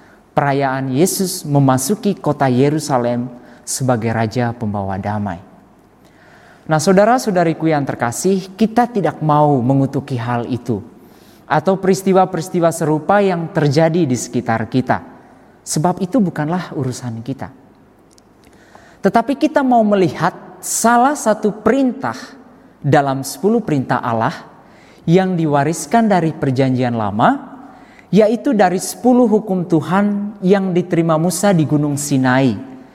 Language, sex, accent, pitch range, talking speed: Indonesian, male, native, 130-200 Hz, 105 wpm